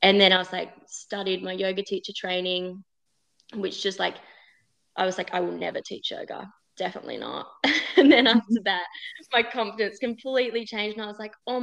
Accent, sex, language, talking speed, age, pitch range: Australian, female, English, 185 wpm, 20-39, 190-225 Hz